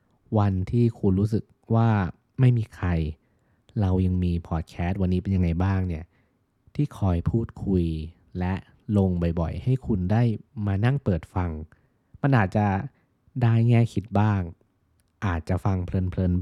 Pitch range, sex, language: 90-115 Hz, male, Thai